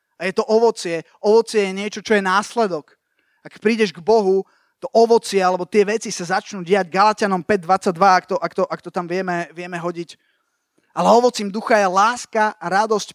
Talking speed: 185 wpm